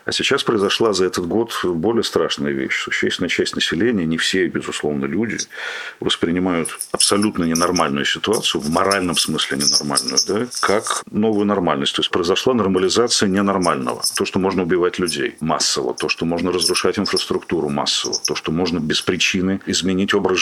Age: 40-59